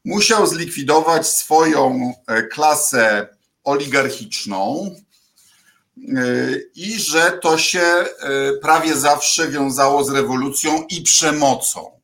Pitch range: 130-190 Hz